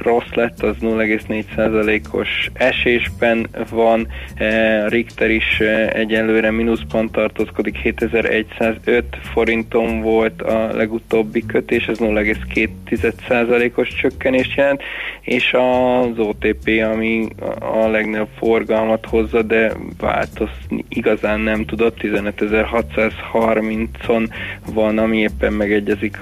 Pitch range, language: 105-115 Hz, Hungarian